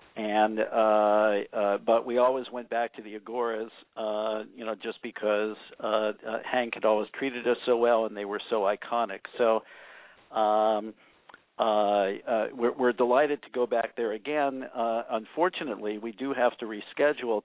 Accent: American